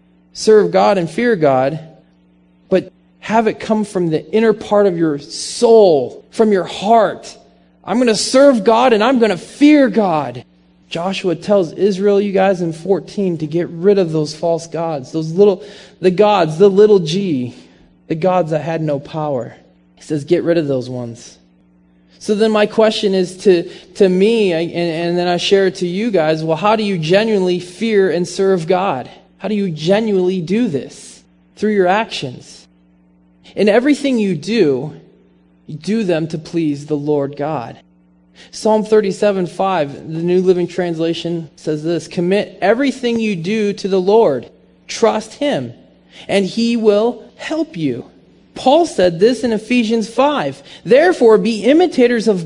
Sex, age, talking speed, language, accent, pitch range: male, 20-39, 165 wpm, English, American, 155-215 Hz